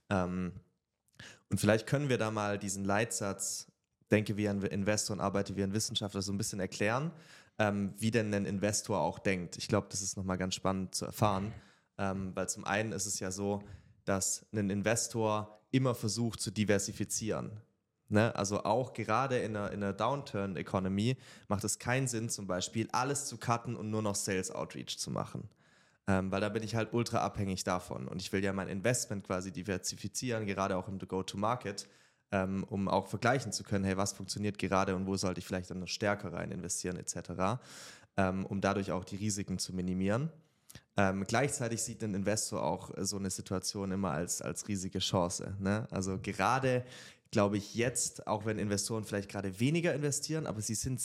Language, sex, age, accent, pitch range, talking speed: German, male, 20-39, German, 95-115 Hz, 185 wpm